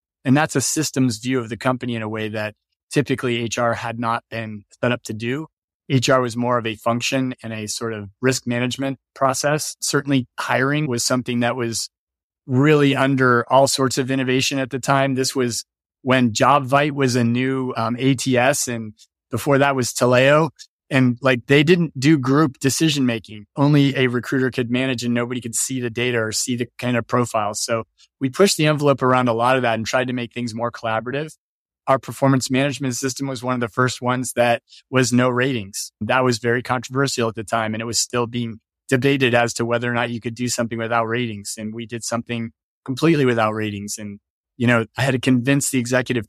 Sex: male